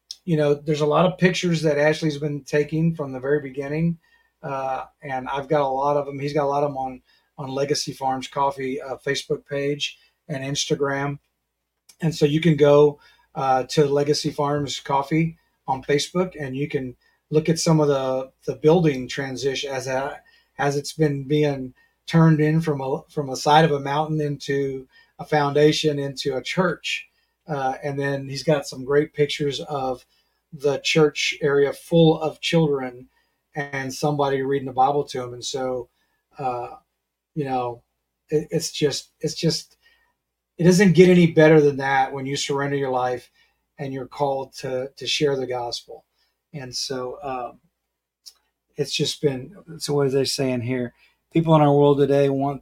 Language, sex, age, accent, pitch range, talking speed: English, male, 40-59, American, 135-155 Hz, 175 wpm